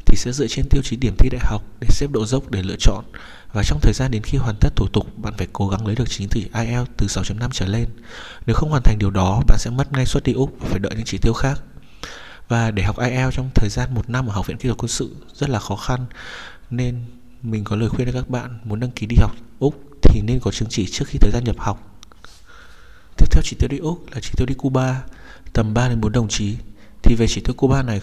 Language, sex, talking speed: Vietnamese, male, 270 wpm